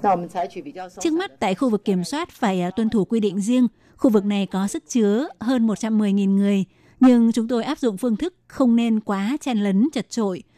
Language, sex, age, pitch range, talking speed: Vietnamese, female, 20-39, 195-235 Hz, 205 wpm